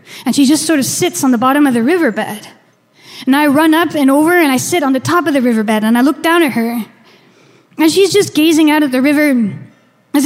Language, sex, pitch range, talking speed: English, female, 240-320 Hz, 245 wpm